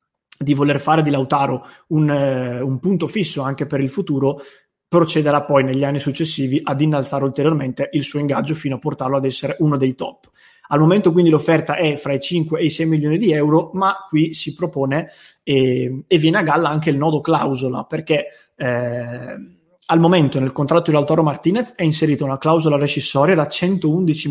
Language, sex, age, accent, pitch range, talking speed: English, male, 20-39, Italian, 140-165 Hz, 185 wpm